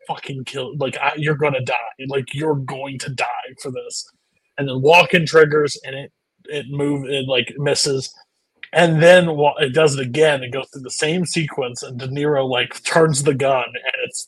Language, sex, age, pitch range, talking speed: English, male, 30-49, 130-170 Hz, 200 wpm